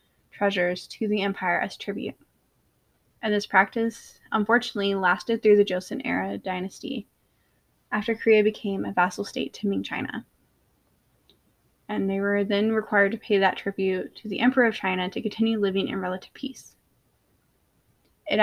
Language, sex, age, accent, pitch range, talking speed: English, female, 10-29, American, 195-220 Hz, 150 wpm